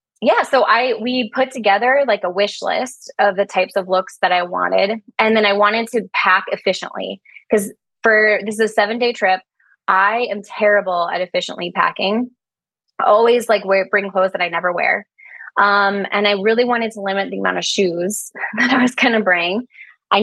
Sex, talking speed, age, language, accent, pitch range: female, 195 wpm, 20-39, English, American, 195-230 Hz